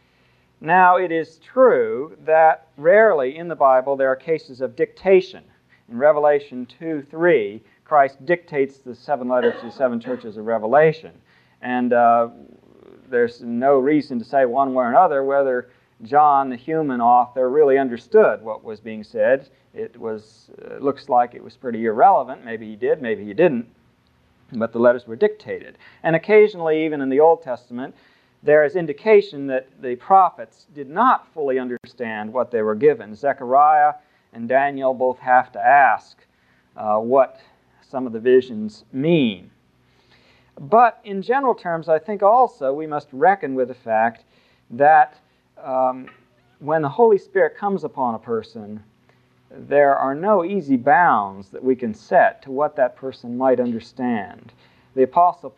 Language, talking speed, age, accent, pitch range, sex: English, 155 wpm, 40-59, American, 120-165 Hz, male